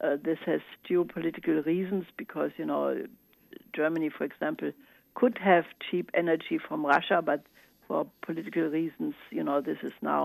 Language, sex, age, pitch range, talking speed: English, female, 60-79, 160-205 Hz, 150 wpm